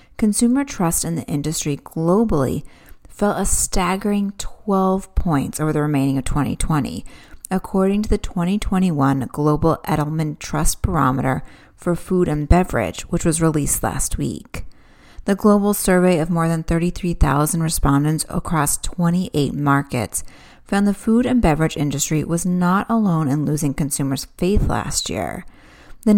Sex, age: female, 30-49